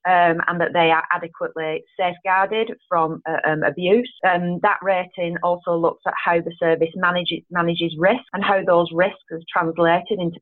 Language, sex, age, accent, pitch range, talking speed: English, female, 30-49, British, 170-210 Hz, 175 wpm